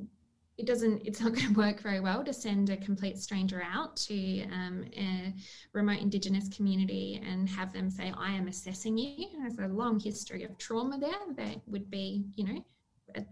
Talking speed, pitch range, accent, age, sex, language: 190 wpm, 195-235 Hz, Australian, 10-29, female, English